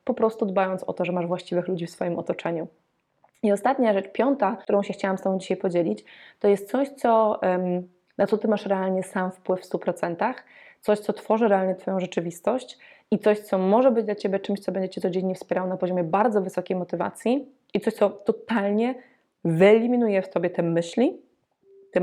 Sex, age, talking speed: female, 20-39, 190 wpm